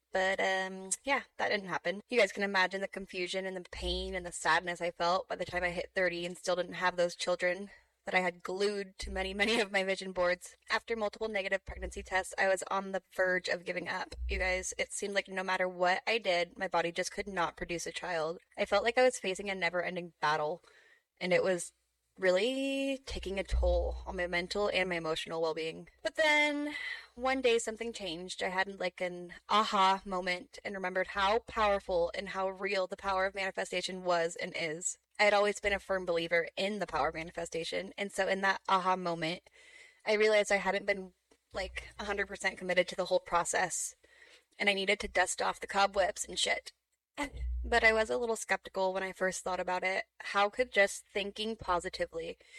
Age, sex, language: 10-29, female, English